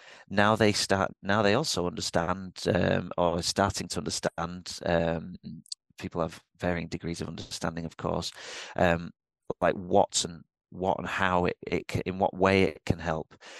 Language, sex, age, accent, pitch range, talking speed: English, male, 30-49, British, 85-95 Hz, 160 wpm